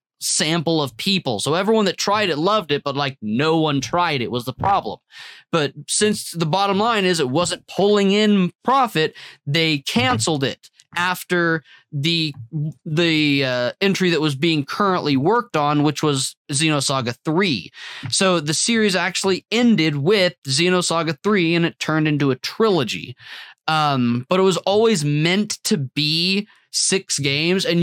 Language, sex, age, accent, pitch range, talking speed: English, male, 20-39, American, 145-190 Hz, 155 wpm